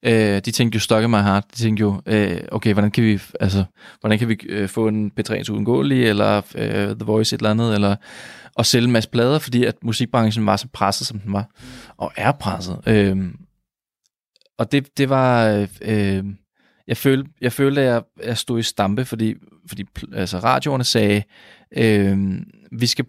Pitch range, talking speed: 100-115 Hz, 185 wpm